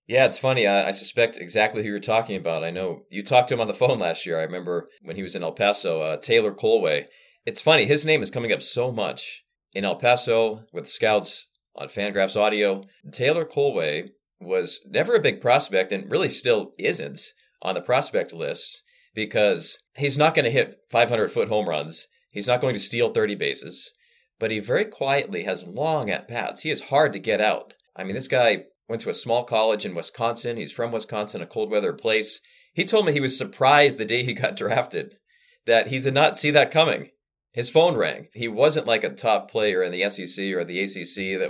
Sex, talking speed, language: male, 215 wpm, English